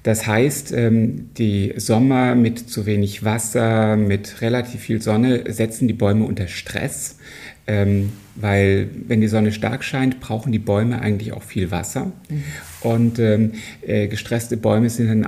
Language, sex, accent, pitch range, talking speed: German, male, German, 100-125 Hz, 140 wpm